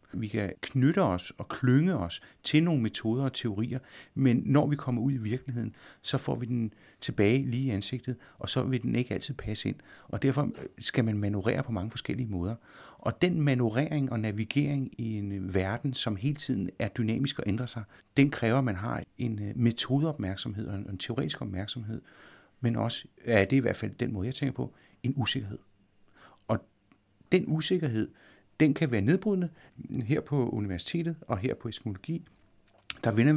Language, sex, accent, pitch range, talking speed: Danish, male, native, 105-135 Hz, 185 wpm